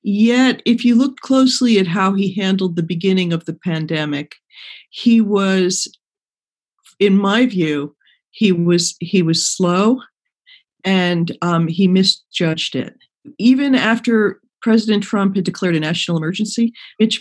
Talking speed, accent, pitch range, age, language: 135 wpm, American, 170-220 Hz, 50-69, English